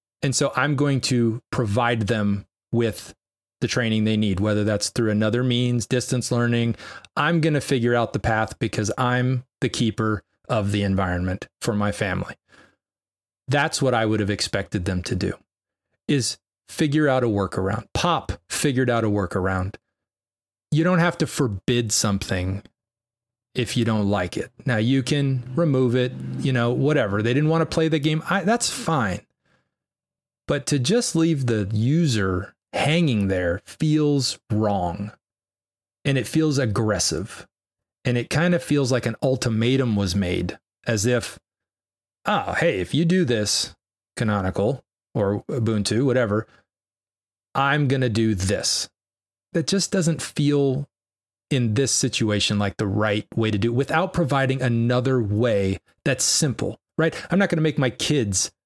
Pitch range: 100-135 Hz